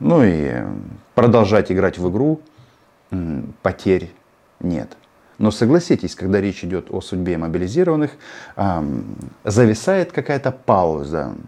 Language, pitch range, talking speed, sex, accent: Russian, 90-125 Hz, 100 wpm, male, native